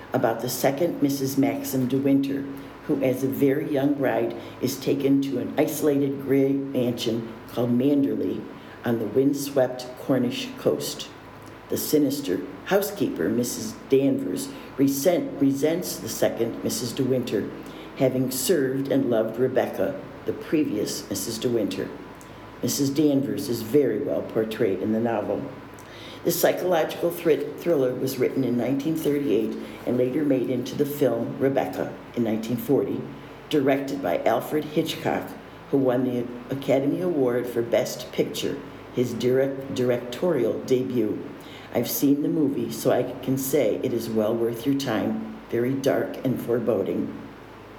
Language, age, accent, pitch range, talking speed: English, 60-79, American, 125-140 Hz, 135 wpm